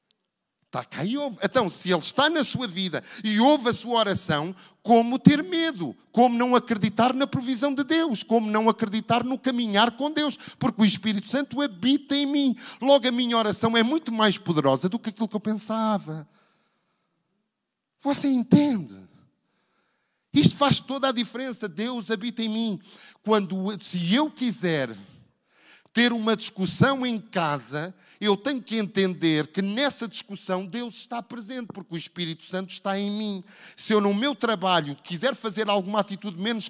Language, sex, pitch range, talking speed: Portuguese, male, 195-240 Hz, 155 wpm